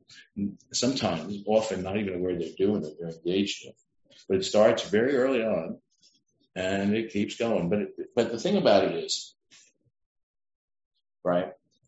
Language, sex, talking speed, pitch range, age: English, male, 150 wpm, 85-105 Hz, 50-69